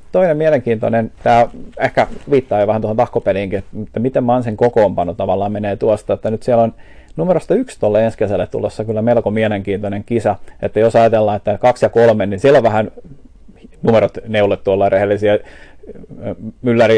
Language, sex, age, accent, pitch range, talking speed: Finnish, male, 30-49, native, 105-115 Hz, 170 wpm